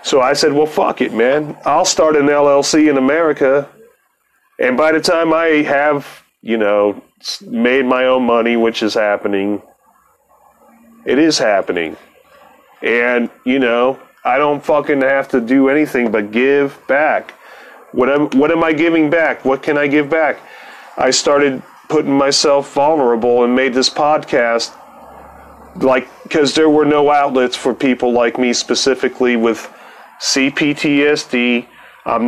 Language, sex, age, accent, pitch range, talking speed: English, male, 30-49, American, 125-150 Hz, 145 wpm